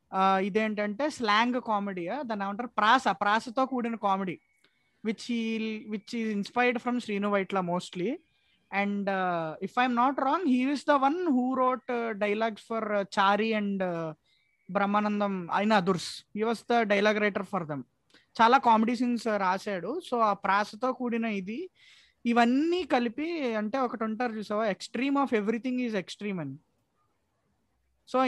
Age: 20-39